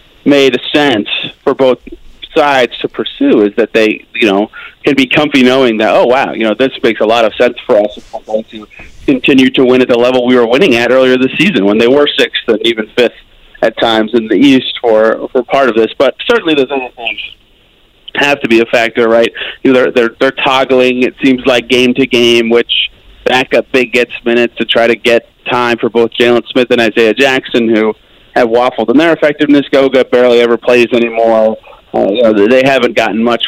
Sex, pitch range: male, 115-135 Hz